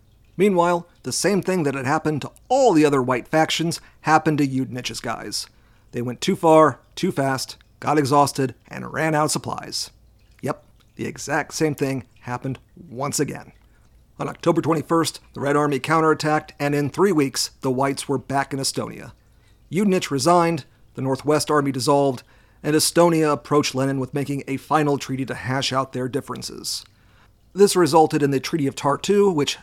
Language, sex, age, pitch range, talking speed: English, male, 40-59, 130-160 Hz, 170 wpm